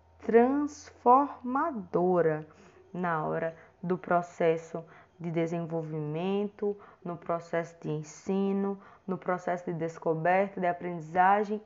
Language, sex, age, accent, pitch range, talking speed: Portuguese, female, 20-39, Brazilian, 185-270 Hz, 85 wpm